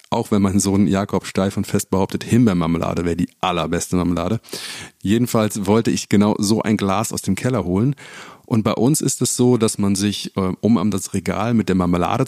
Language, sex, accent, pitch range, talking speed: German, male, German, 95-115 Hz, 200 wpm